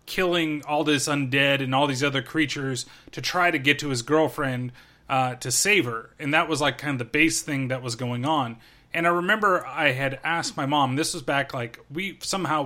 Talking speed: 225 wpm